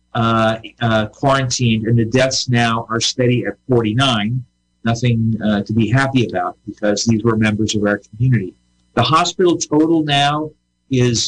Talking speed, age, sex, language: 155 wpm, 50-69, male, English